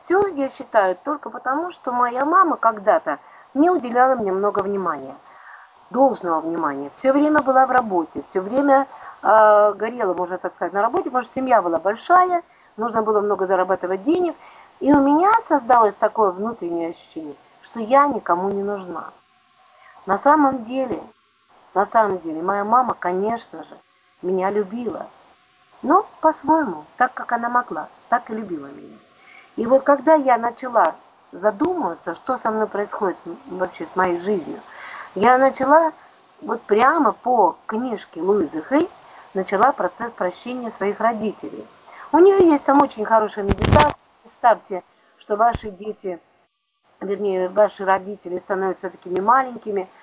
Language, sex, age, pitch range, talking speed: Russian, female, 40-59, 195-285 Hz, 140 wpm